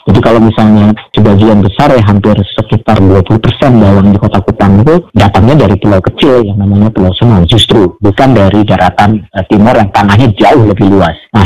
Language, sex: Indonesian, male